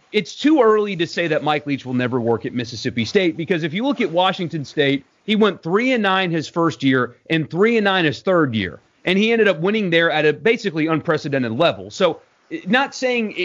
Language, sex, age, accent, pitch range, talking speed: English, male, 30-49, American, 150-215 Hz, 225 wpm